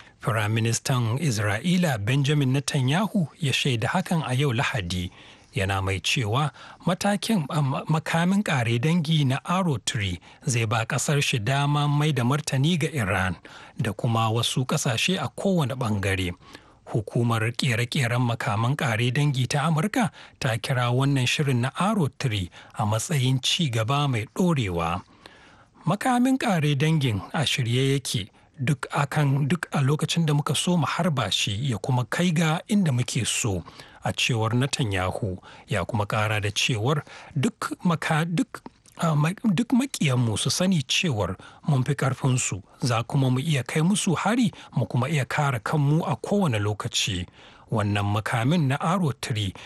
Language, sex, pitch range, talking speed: English, male, 120-160 Hz, 120 wpm